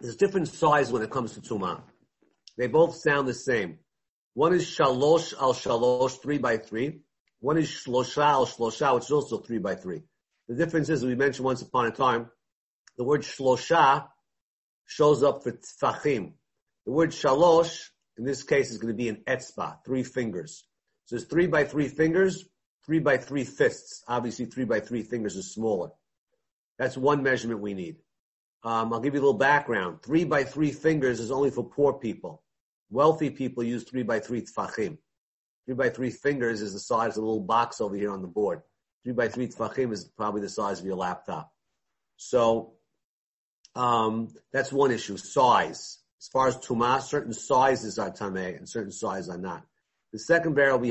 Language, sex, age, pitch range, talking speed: English, male, 50-69, 115-145 Hz, 185 wpm